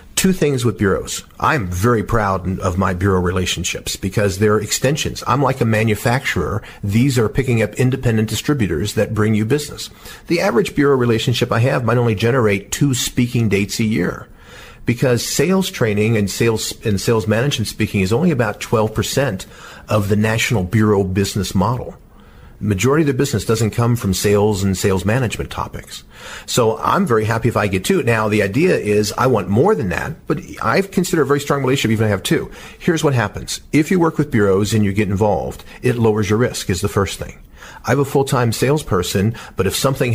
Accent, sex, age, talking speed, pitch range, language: American, male, 50-69, 195 wpm, 105-130 Hz, English